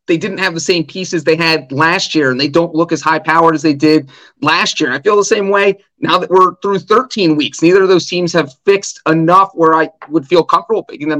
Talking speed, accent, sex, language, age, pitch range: 245 wpm, American, male, English, 30-49, 160-200 Hz